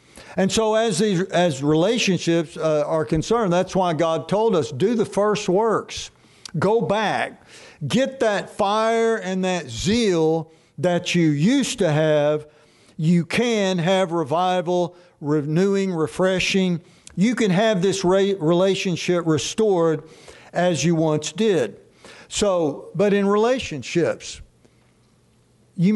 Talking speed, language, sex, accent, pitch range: 120 wpm, English, male, American, 160-205 Hz